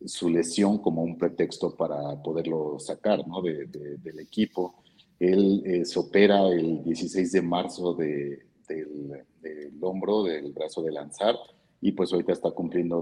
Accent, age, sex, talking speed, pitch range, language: Mexican, 50-69, male, 160 wpm, 80-90 Hz, Spanish